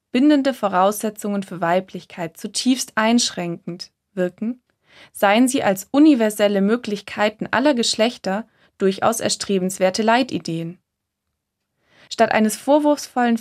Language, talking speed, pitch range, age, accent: German, 90 wpm, 190-240 Hz, 20-39, German